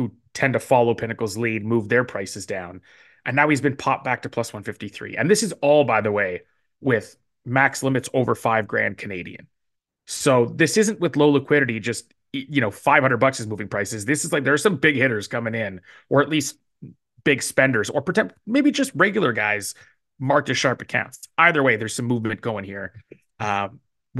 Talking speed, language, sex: 190 wpm, English, male